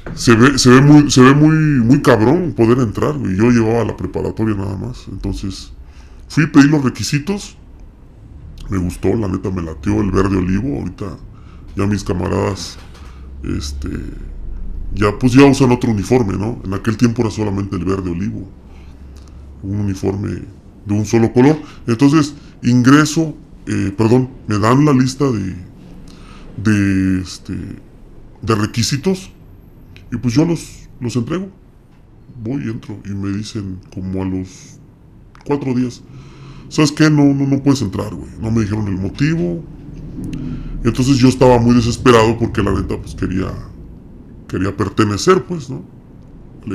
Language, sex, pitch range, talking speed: Spanish, female, 95-130 Hz, 155 wpm